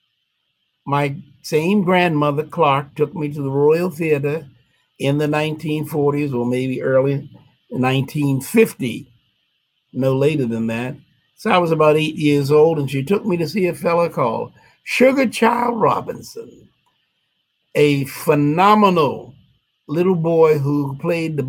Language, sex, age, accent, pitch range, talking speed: English, male, 60-79, American, 130-160 Hz, 130 wpm